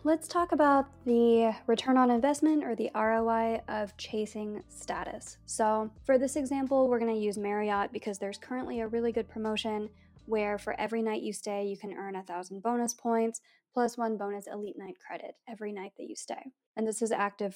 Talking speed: 190 wpm